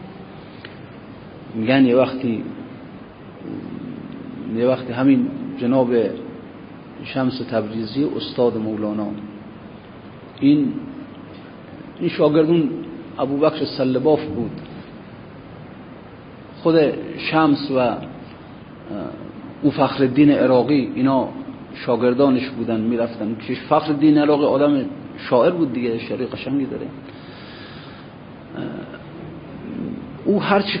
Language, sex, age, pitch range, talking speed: Persian, male, 50-69, 125-165 Hz, 70 wpm